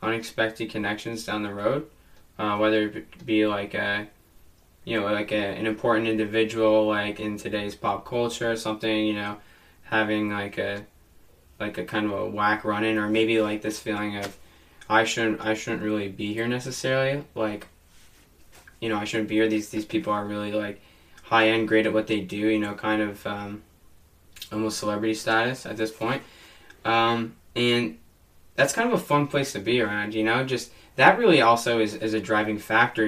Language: English